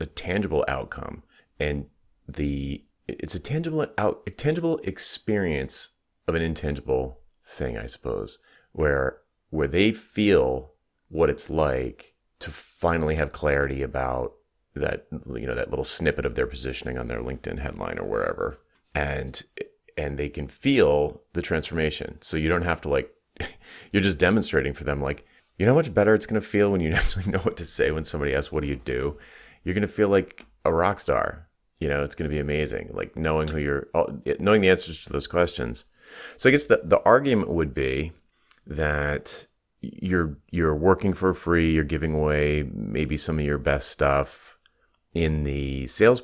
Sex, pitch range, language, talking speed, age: male, 70-95 Hz, English, 175 wpm, 30-49